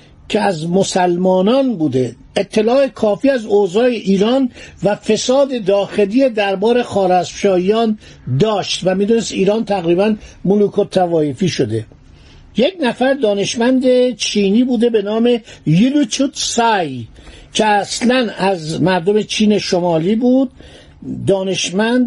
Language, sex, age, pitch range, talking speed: Persian, male, 50-69, 180-240 Hz, 110 wpm